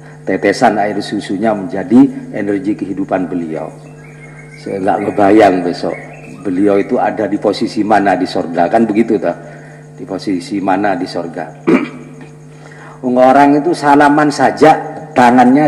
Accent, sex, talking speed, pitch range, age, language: native, male, 125 wpm, 120-150 Hz, 50-69, Indonesian